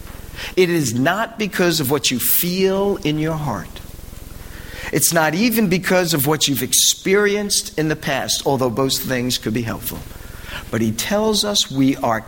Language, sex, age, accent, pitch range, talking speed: English, male, 50-69, American, 110-170 Hz, 165 wpm